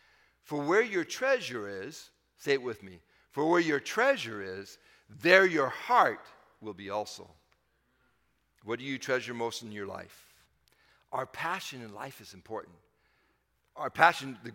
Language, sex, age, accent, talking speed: English, male, 50-69, American, 155 wpm